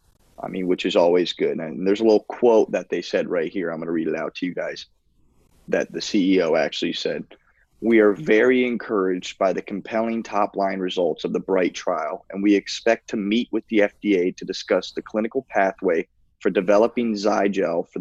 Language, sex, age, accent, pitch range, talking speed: English, male, 20-39, American, 95-110 Hz, 205 wpm